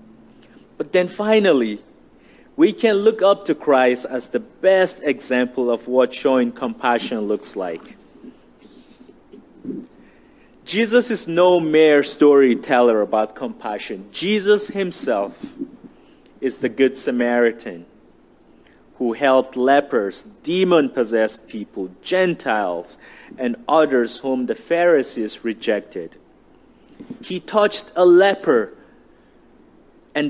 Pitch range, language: 120-190 Hz, English